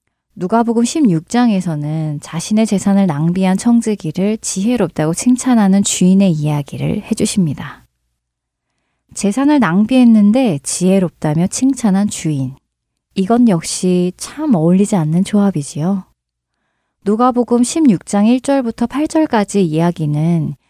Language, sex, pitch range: Korean, female, 165-230 Hz